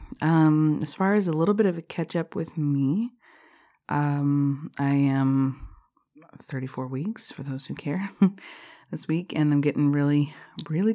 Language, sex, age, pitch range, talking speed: English, female, 20-39, 140-170 Hz, 160 wpm